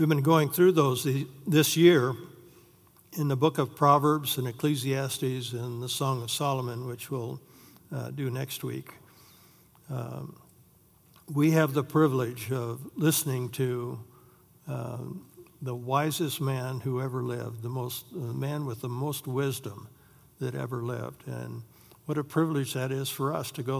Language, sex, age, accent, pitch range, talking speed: English, male, 60-79, American, 125-145 Hz, 150 wpm